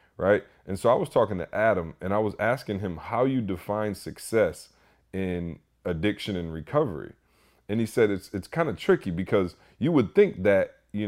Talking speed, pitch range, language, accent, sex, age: 190 wpm, 85-110 Hz, English, American, male, 30-49